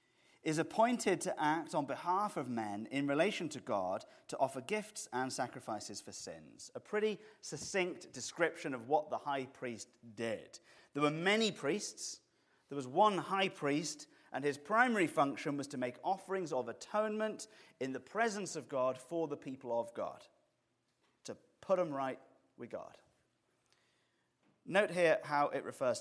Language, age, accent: English, 30-49, British